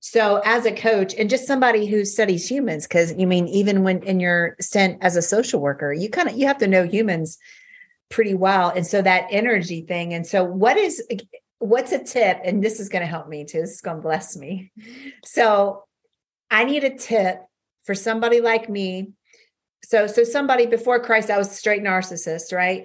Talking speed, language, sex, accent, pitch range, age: 200 wpm, English, female, American, 185-225 Hz, 40-59